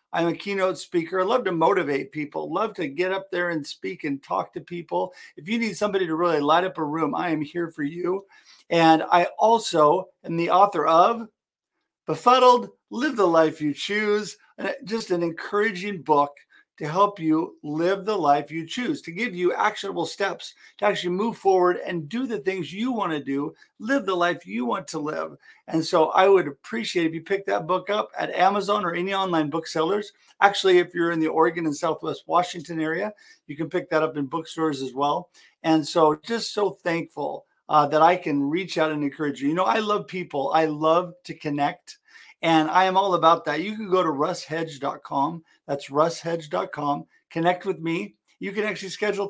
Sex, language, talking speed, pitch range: male, English, 200 wpm, 155-190 Hz